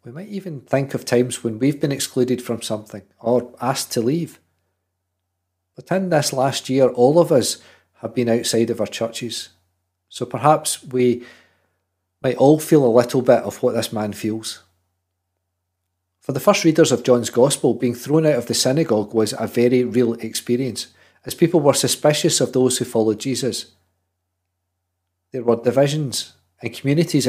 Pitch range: 105-145 Hz